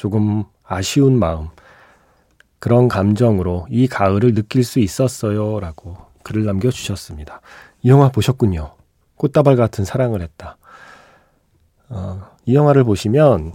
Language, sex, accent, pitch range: Korean, male, native, 95-135 Hz